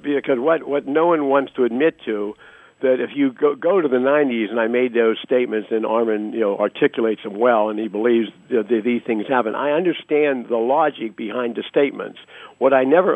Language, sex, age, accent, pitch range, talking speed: English, male, 60-79, American, 125-160 Hz, 210 wpm